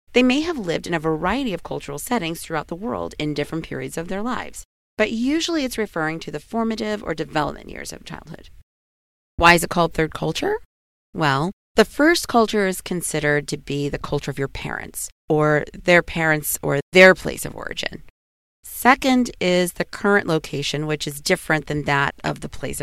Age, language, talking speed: 40-59, English, 185 wpm